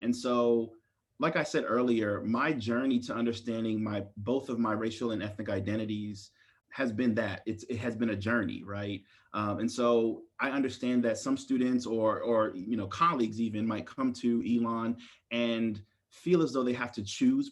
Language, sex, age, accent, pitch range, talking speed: English, male, 30-49, American, 110-125 Hz, 185 wpm